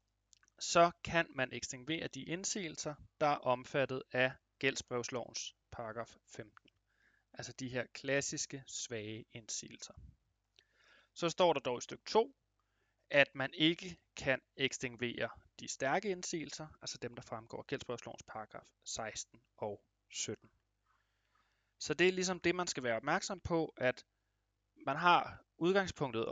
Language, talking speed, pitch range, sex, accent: Danish, 130 wpm, 115-150 Hz, male, native